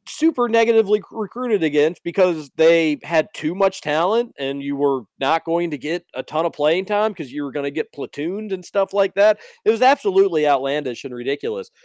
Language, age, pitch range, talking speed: English, 40-59, 125-165 Hz, 200 wpm